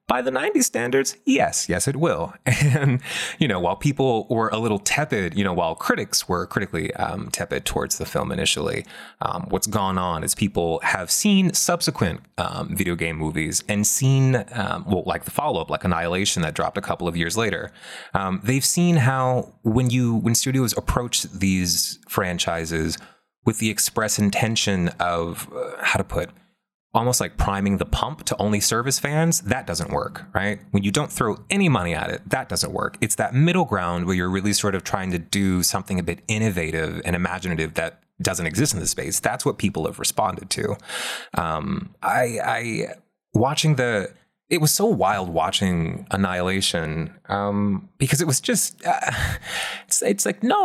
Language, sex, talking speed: English, male, 180 wpm